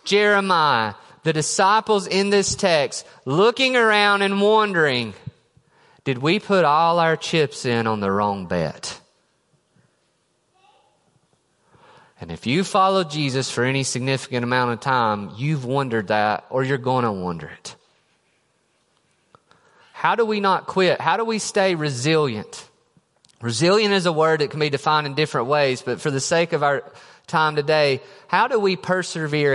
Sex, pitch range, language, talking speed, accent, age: male, 135-200 Hz, English, 150 wpm, American, 30-49